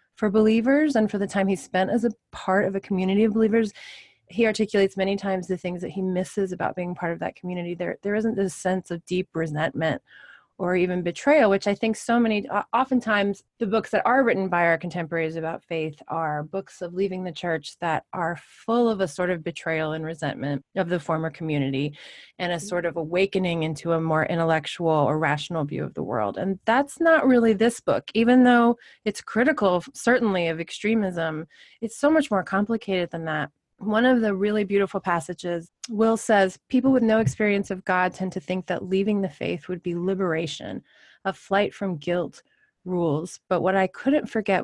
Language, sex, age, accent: English, female, 30-49, American